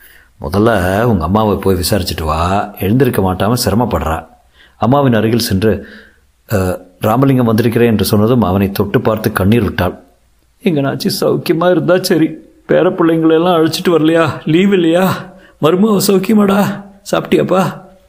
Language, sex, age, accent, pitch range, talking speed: Tamil, male, 50-69, native, 95-135 Hz, 115 wpm